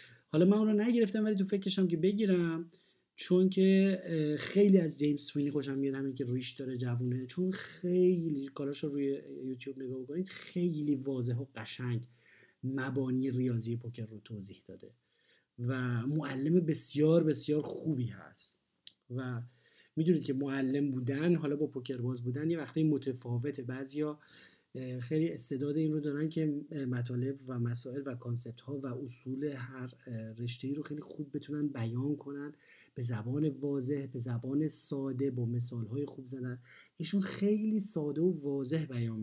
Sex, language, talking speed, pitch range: male, Persian, 155 wpm, 125-155 Hz